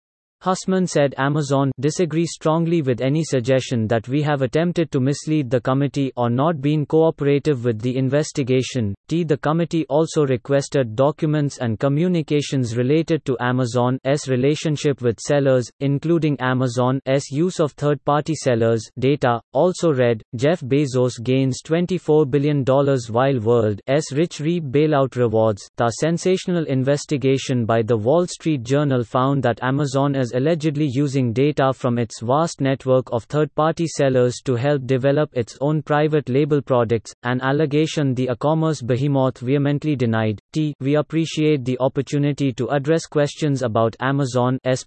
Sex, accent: male, Indian